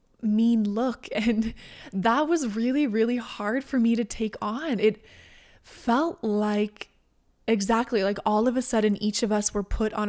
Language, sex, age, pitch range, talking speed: English, female, 20-39, 205-230 Hz, 165 wpm